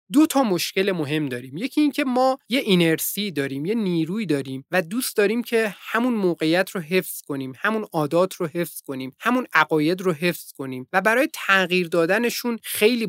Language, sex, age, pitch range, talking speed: Persian, male, 30-49, 165-230 Hz, 175 wpm